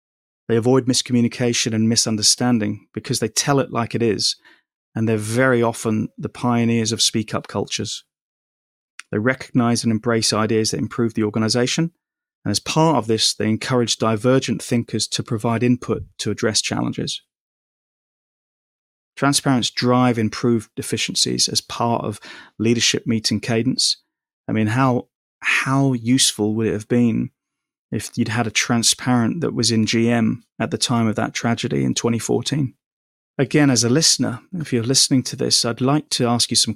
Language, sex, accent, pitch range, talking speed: English, male, British, 110-130 Hz, 160 wpm